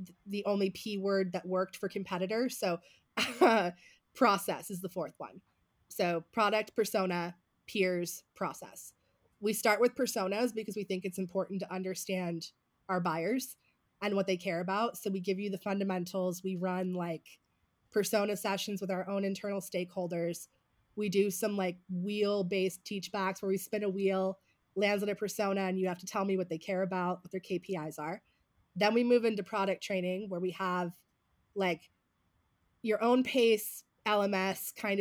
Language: English